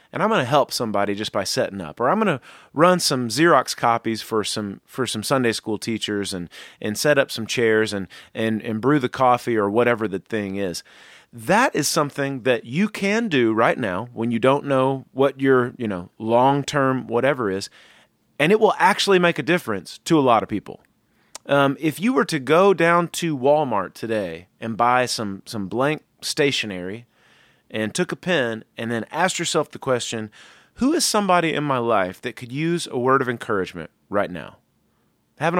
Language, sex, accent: English, male, American